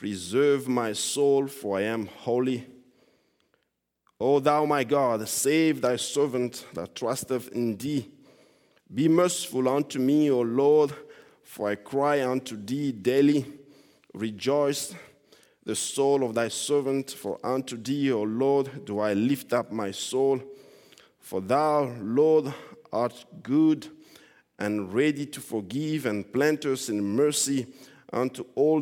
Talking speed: 130 wpm